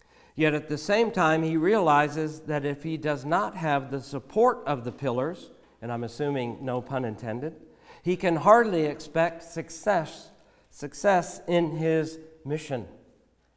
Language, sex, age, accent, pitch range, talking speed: English, male, 60-79, American, 145-190 Hz, 145 wpm